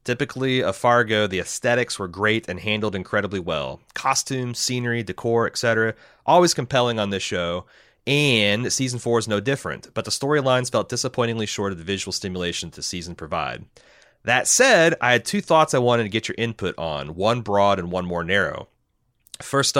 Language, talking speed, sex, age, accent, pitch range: English, 180 wpm, male, 30-49, American, 95-125 Hz